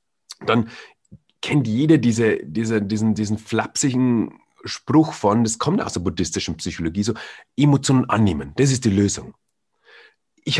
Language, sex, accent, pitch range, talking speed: German, male, German, 115-165 Hz, 135 wpm